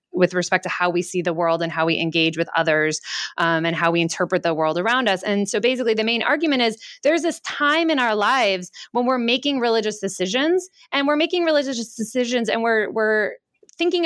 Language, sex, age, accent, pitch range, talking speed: English, female, 20-39, American, 185-245 Hz, 215 wpm